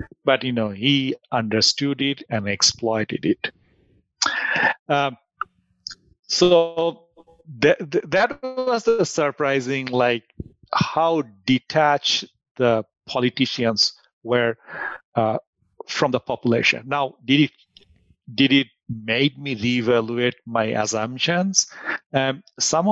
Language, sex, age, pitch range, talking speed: English, male, 50-69, 115-145 Hz, 100 wpm